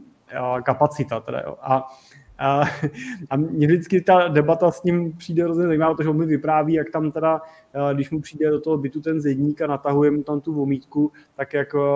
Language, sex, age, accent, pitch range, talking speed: Czech, male, 20-39, native, 130-155 Hz, 190 wpm